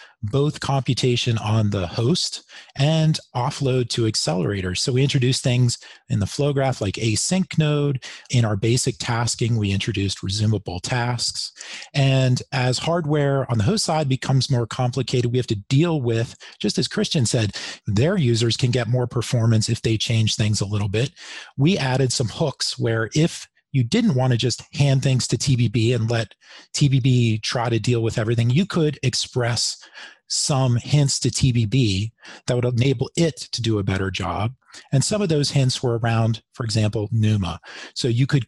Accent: American